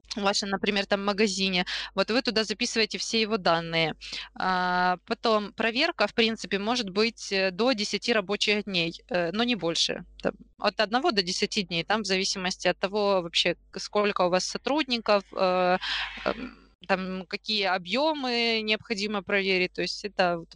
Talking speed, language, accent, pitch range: 140 wpm, Russian, native, 190-225 Hz